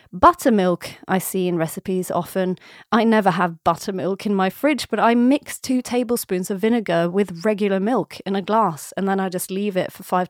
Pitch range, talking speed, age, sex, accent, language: 190-245 Hz, 200 wpm, 30-49, female, British, English